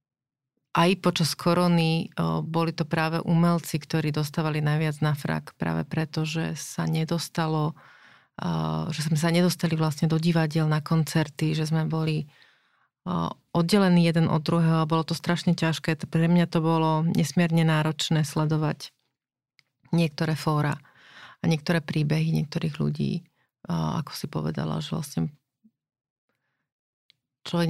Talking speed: 125 wpm